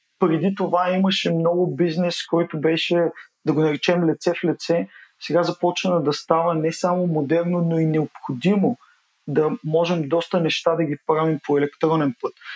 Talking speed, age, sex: 160 wpm, 20-39, male